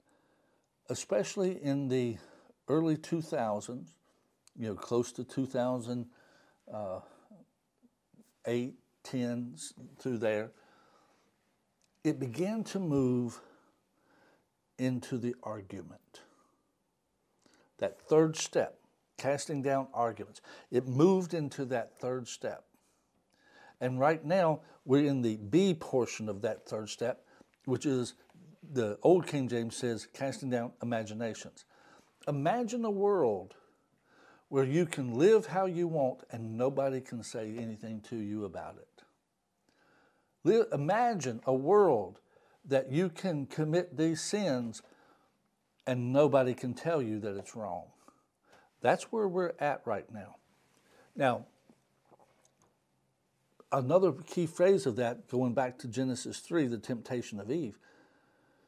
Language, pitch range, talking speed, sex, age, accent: English, 120-160 Hz, 115 wpm, male, 60-79, American